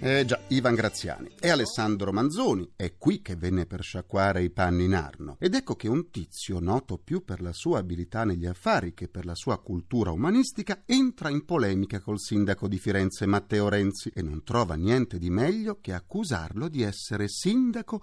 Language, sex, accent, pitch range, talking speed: Italian, male, native, 90-135 Hz, 185 wpm